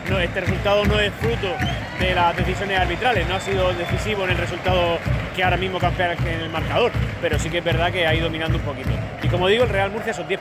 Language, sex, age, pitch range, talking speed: Spanish, male, 30-49, 145-180 Hz, 240 wpm